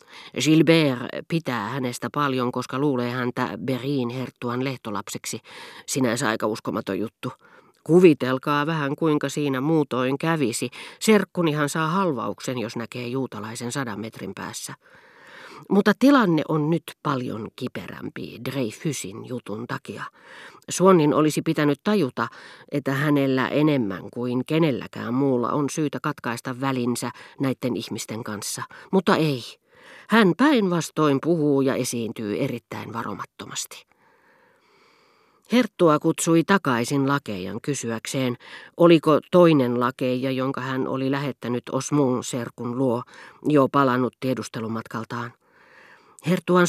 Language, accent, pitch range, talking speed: Finnish, native, 125-160 Hz, 105 wpm